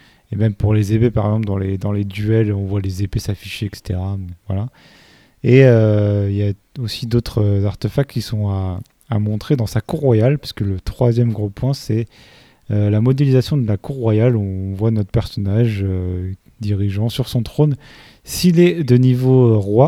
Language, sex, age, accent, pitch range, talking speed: French, male, 30-49, French, 100-125 Hz, 195 wpm